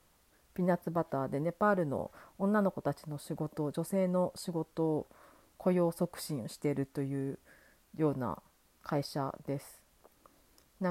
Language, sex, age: Japanese, female, 40-59